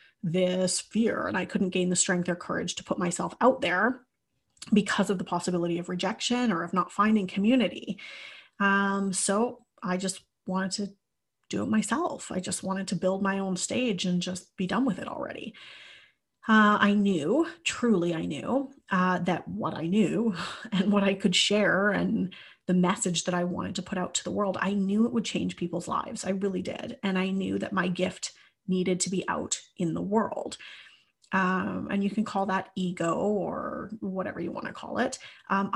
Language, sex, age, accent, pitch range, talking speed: English, female, 30-49, American, 185-215 Hz, 195 wpm